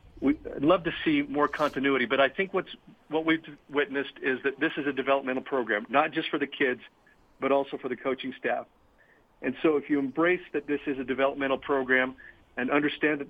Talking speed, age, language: 205 wpm, 50-69, English